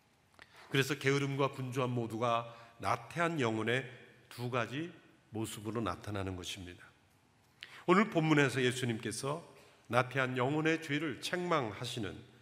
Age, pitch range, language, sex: 40-59, 110-150 Hz, Korean, male